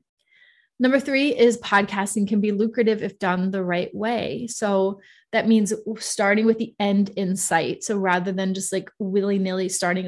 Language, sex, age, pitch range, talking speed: English, female, 20-39, 190-220 Hz, 175 wpm